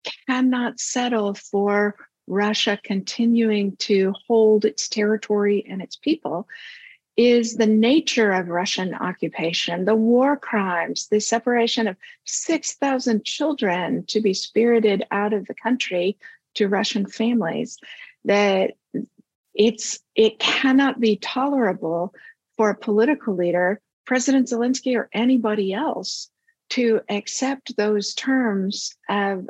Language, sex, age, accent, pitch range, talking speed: English, female, 50-69, American, 205-245 Hz, 115 wpm